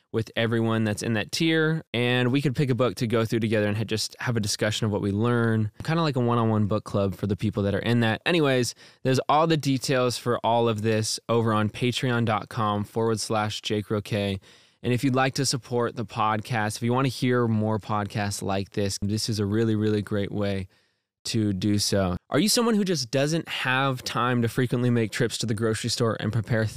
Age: 20-39